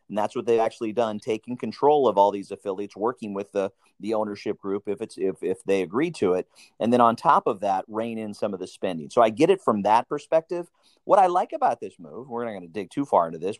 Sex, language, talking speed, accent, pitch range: male, English, 270 wpm, American, 105-130 Hz